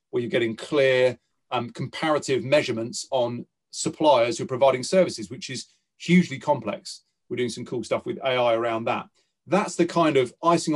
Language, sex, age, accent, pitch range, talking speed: English, male, 30-49, British, 120-165 Hz, 175 wpm